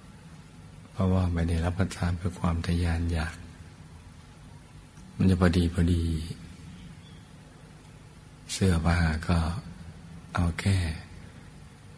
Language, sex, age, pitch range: Thai, male, 60-79, 85-90 Hz